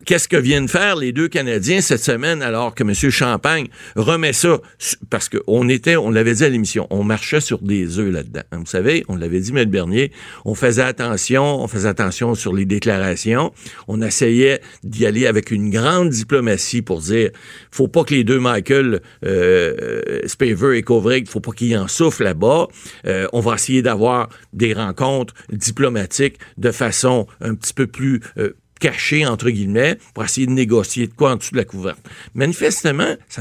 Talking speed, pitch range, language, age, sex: 185 wpm, 110-155 Hz, French, 50-69, male